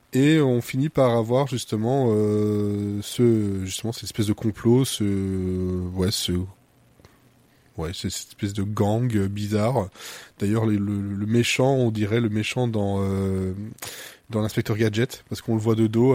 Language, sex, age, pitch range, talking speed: French, male, 20-39, 105-125 Hz, 155 wpm